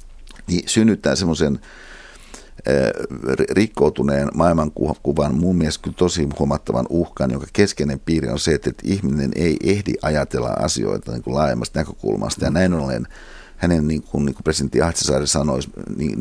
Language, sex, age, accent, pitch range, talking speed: Finnish, male, 60-79, native, 70-85 Hz, 135 wpm